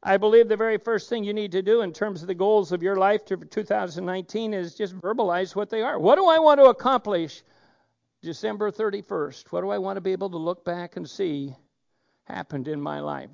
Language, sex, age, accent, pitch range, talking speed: English, male, 60-79, American, 170-220 Hz, 225 wpm